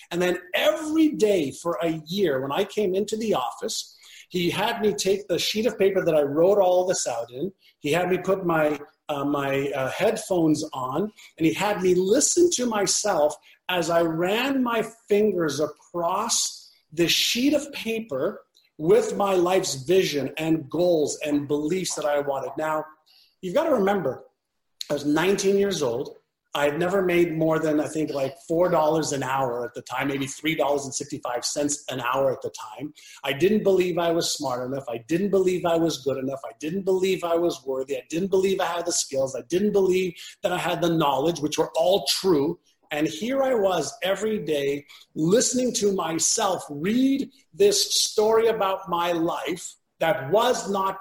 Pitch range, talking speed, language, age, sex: 155-200 Hz, 180 wpm, English, 40-59, male